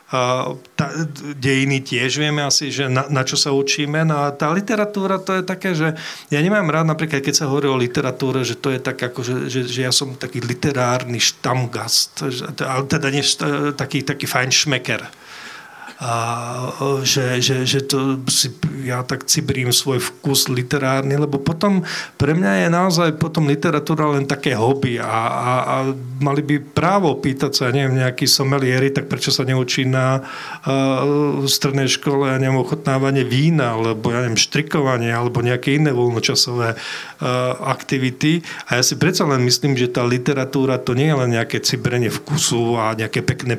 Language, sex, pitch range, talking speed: Slovak, male, 125-150 Hz, 175 wpm